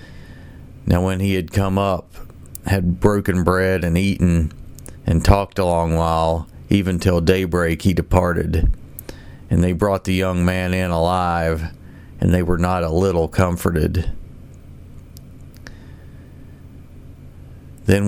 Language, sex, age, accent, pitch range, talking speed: English, male, 40-59, American, 85-95 Hz, 125 wpm